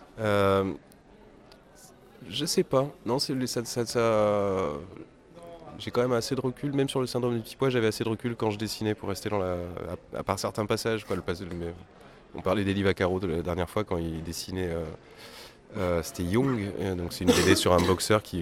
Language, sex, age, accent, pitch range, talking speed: French, male, 20-39, French, 85-120 Hz, 215 wpm